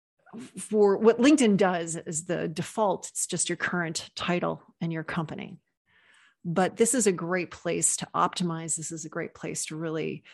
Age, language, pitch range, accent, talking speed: 40-59, English, 170-205 Hz, American, 175 wpm